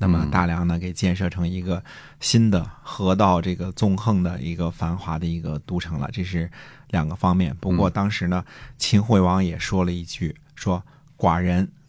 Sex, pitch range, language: male, 90-105 Hz, Chinese